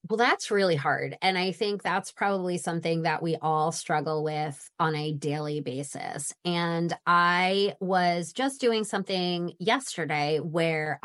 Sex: female